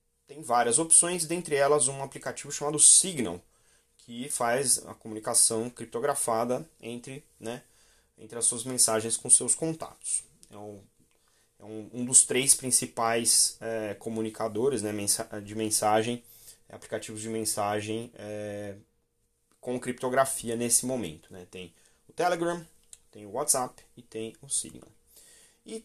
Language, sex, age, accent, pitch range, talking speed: Portuguese, male, 20-39, Brazilian, 110-130 Hz, 120 wpm